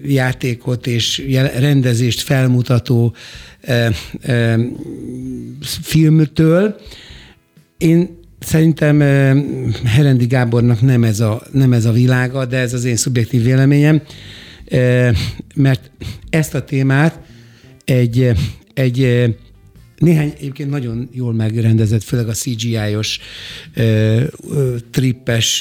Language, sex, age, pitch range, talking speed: Hungarian, male, 60-79, 115-135 Hz, 85 wpm